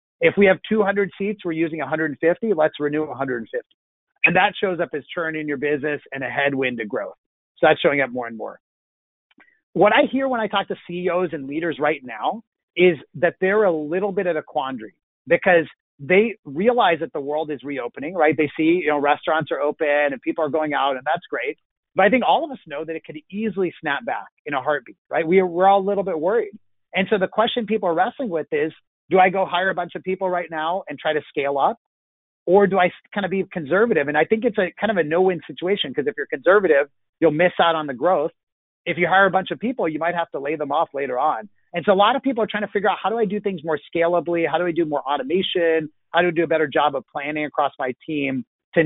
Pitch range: 150-195 Hz